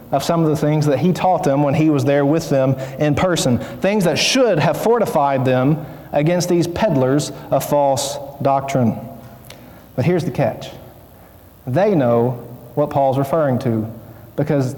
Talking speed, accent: 160 wpm, American